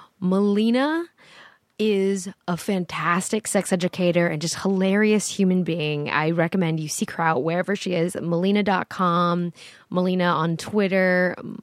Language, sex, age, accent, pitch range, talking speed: English, female, 10-29, American, 175-230 Hz, 125 wpm